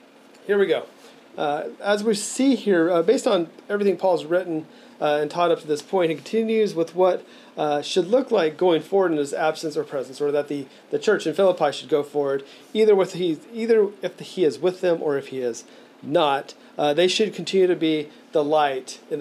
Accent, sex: American, male